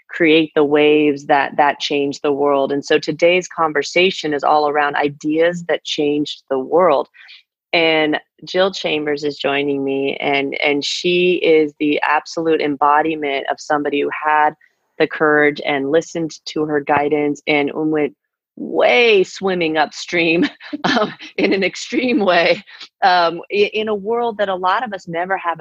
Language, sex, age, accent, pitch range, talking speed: English, female, 30-49, American, 150-175 Hz, 155 wpm